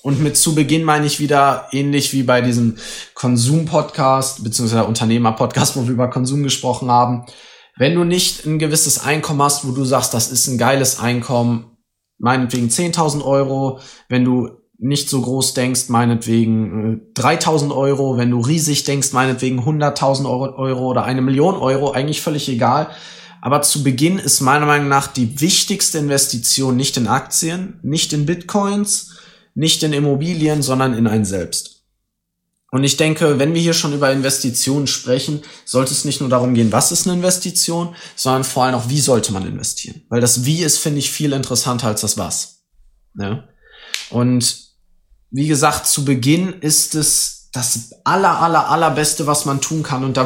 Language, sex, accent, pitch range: German, male, German, 125-155 Hz